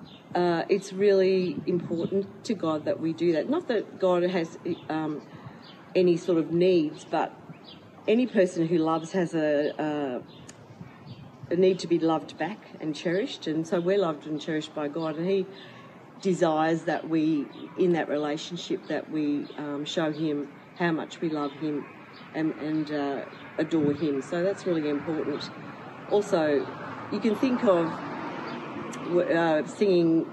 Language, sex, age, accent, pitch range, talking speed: English, female, 40-59, Australian, 155-185 Hz, 150 wpm